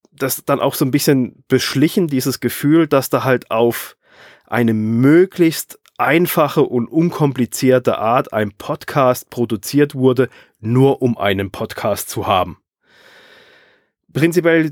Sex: male